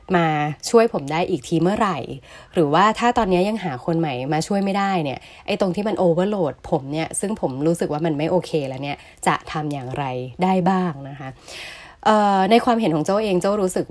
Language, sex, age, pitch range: Thai, female, 20-39, 160-200 Hz